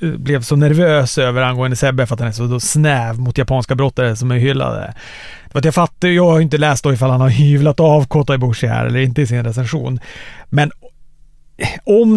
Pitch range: 125-155 Hz